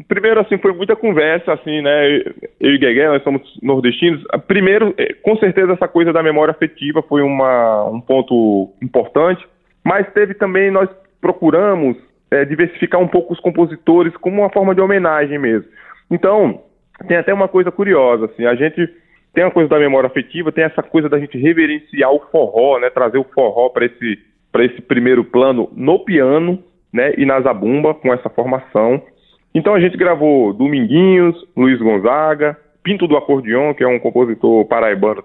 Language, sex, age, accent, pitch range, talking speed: Portuguese, male, 20-39, Brazilian, 145-195 Hz, 170 wpm